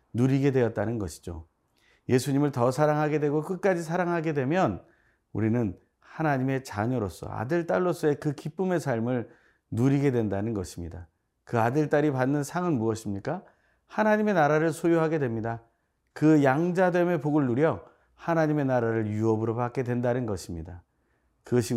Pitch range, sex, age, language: 110-165 Hz, male, 40-59, Korean